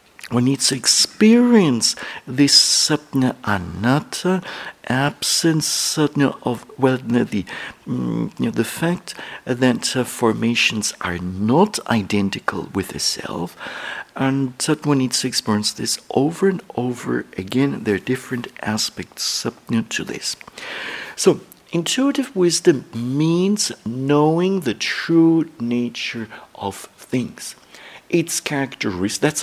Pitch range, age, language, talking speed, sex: 120-165 Hz, 60-79, English, 105 wpm, male